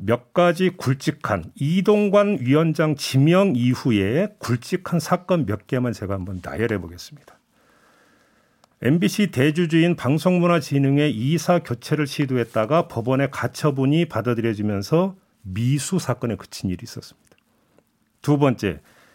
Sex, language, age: male, Korean, 50-69